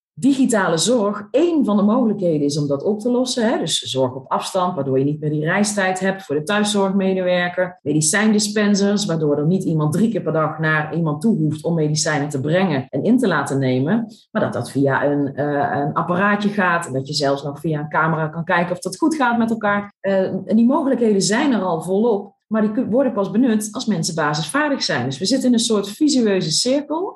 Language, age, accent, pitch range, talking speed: Dutch, 40-59, Dutch, 155-220 Hz, 215 wpm